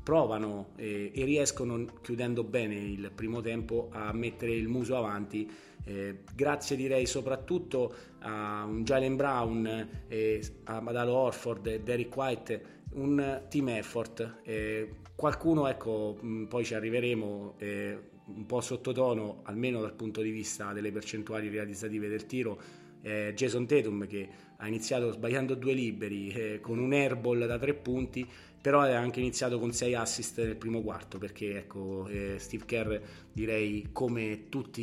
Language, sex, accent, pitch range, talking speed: Italian, male, native, 105-125 Hz, 145 wpm